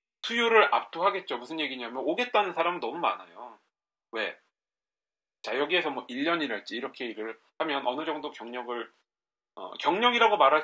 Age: 40-59